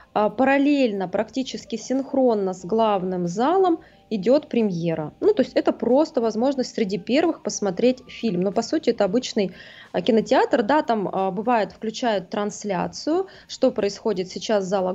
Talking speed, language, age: 135 wpm, Russian, 20-39